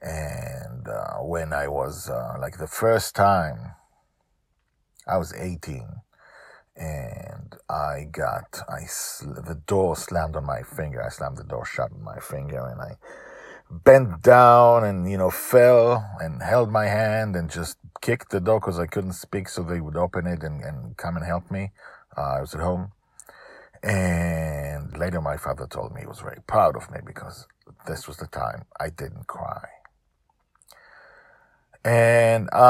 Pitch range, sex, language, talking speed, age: 80-110 Hz, male, English, 165 wpm, 50-69